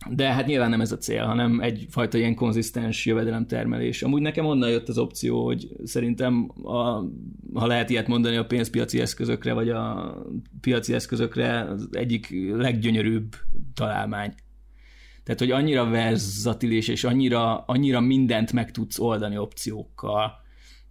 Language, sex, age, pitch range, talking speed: Hungarian, male, 20-39, 105-120 Hz, 135 wpm